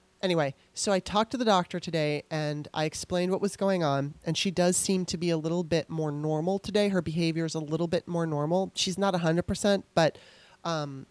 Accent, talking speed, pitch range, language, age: American, 215 wpm, 155-195 Hz, English, 30-49